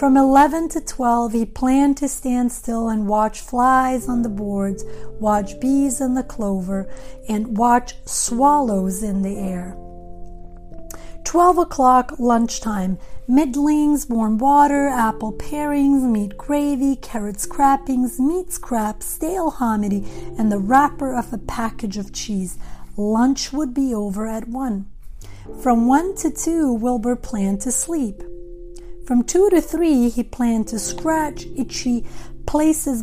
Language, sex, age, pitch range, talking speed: English, female, 40-59, 210-275 Hz, 135 wpm